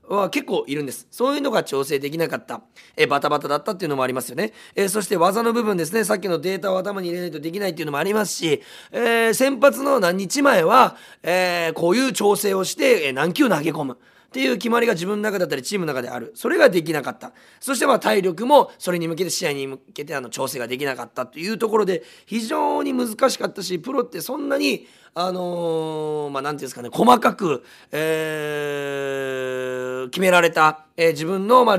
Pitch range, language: 150-235 Hz, Japanese